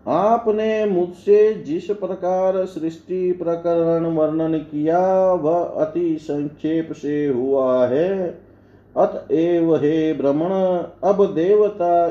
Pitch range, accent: 145-185 Hz, native